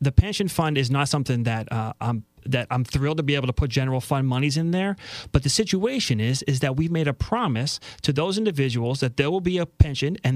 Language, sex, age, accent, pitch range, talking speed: English, male, 30-49, American, 125-160 Hz, 245 wpm